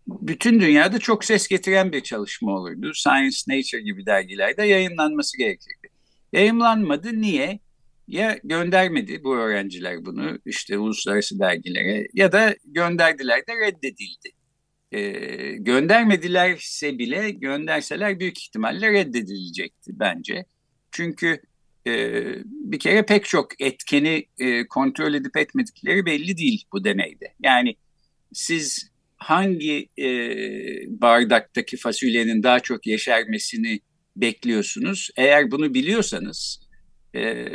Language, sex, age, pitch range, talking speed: Turkish, male, 50-69, 145-220 Hz, 105 wpm